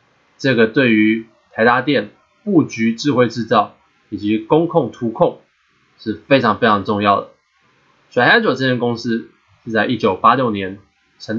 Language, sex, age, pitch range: Chinese, male, 20-39, 105-130 Hz